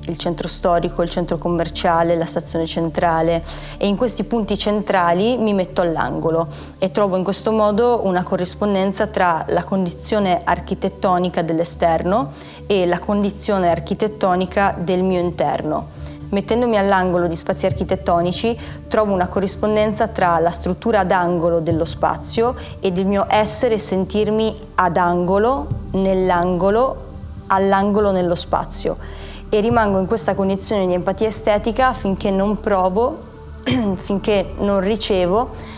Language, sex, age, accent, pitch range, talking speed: Italian, female, 20-39, native, 175-205 Hz, 130 wpm